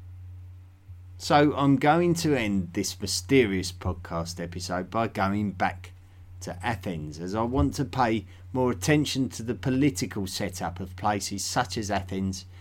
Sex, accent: male, British